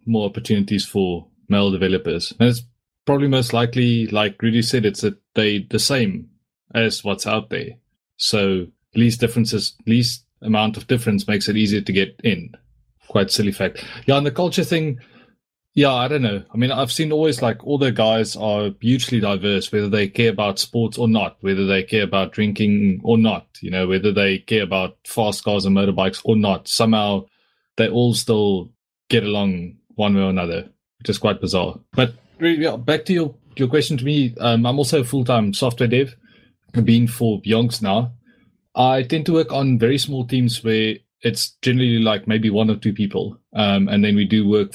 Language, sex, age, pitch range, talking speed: English, male, 20-39, 100-120 Hz, 190 wpm